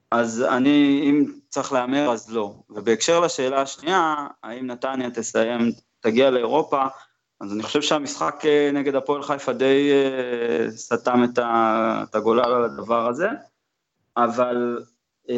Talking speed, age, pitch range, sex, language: 115 wpm, 20-39, 120-150 Hz, male, Hebrew